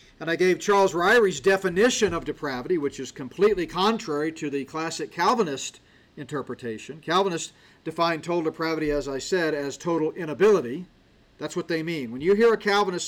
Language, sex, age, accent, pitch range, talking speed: English, male, 50-69, American, 145-200 Hz, 165 wpm